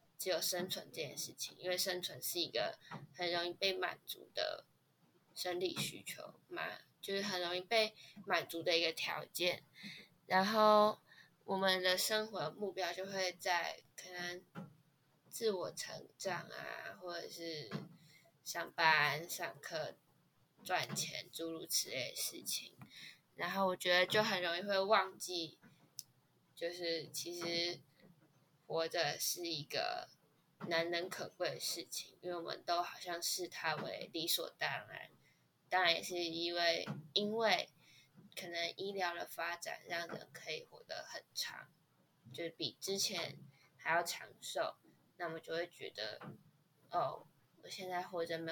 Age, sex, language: 10-29, female, Chinese